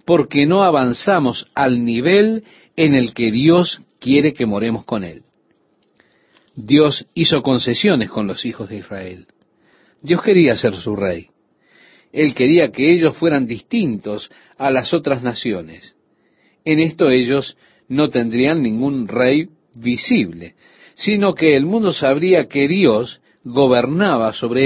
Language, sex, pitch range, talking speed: Spanish, male, 120-175 Hz, 130 wpm